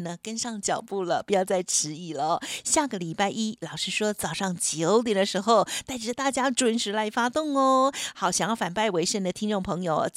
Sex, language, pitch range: female, Chinese, 185-245 Hz